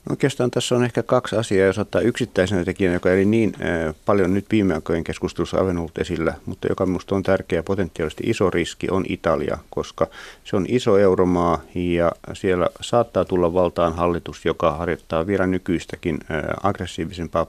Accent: native